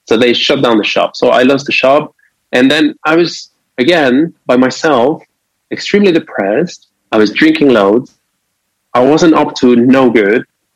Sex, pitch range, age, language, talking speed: male, 115-160 Hz, 20-39, English, 165 wpm